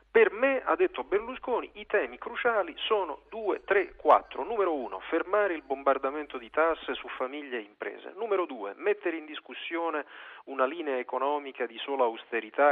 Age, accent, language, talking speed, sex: 40-59, native, Italian, 160 wpm, male